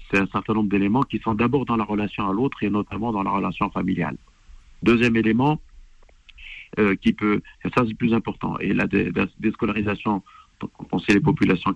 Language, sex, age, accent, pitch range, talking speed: French, male, 50-69, French, 100-120 Hz, 180 wpm